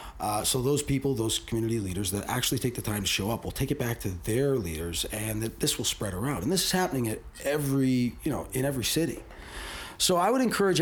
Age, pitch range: 30-49, 95-135 Hz